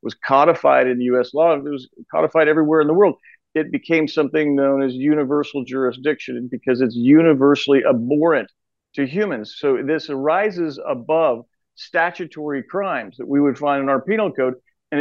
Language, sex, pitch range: English, male, 145-195 Hz